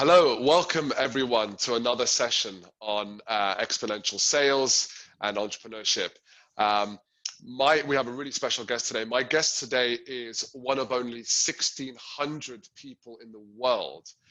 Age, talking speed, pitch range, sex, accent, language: 20-39, 135 wpm, 115-140 Hz, male, British, English